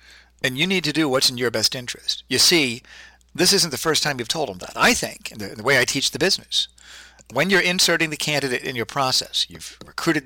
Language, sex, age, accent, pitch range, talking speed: English, male, 50-69, American, 110-150 Hz, 245 wpm